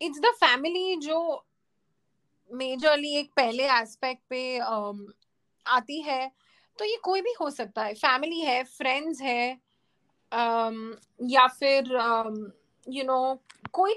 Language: Hindi